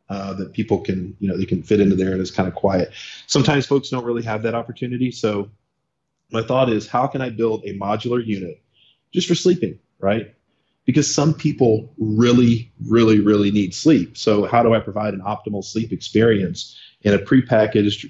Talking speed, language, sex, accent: 195 wpm, English, male, American